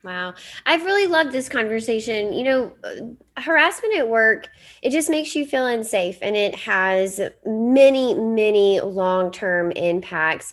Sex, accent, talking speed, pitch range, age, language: female, American, 135 wpm, 180-250 Hz, 20-39, English